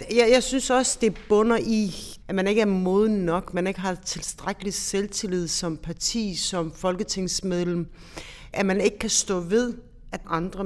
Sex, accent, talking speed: female, native, 175 wpm